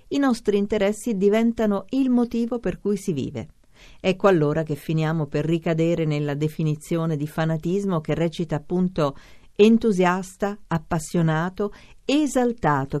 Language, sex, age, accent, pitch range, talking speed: Italian, female, 50-69, native, 145-195 Hz, 120 wpm